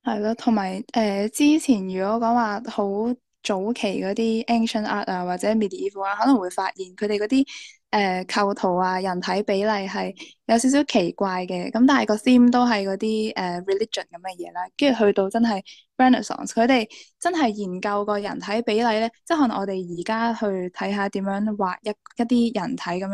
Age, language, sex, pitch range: 10-29, Chinese, female, 190-230 Hz